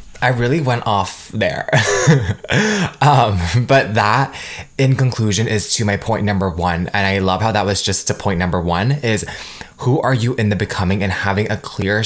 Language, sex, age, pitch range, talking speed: English, male, 20-39, 100-125 Hz, 190 wpm